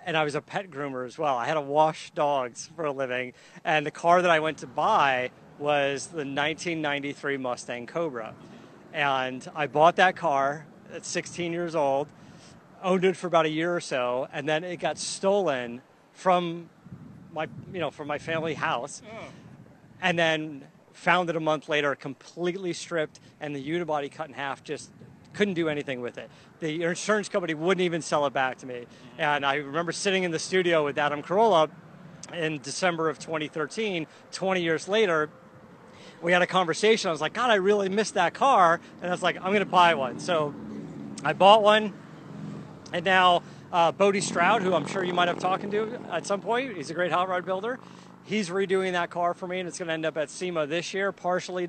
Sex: male